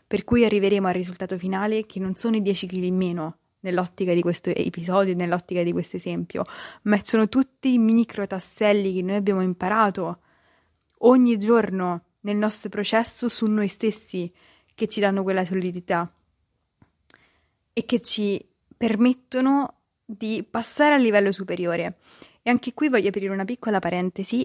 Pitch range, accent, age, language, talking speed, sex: 180-225 Hz, native, 20-39, Italian, 150 wpm, female